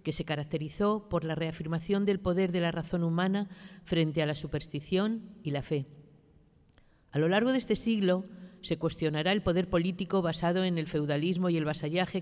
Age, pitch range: 50-69, 160-200 Hz